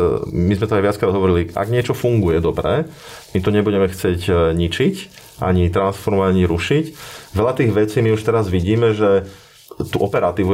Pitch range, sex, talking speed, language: 95-110 Hz, male, 165 wpm, Slovak